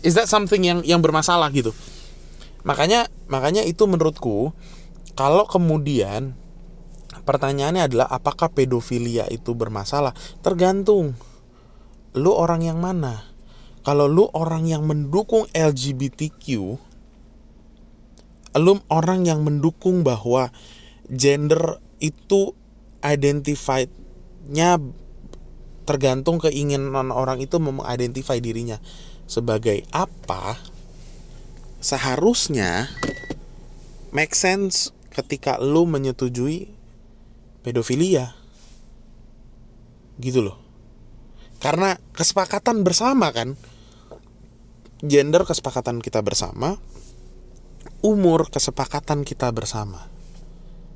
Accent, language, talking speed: native, Indonesian, 80 wpm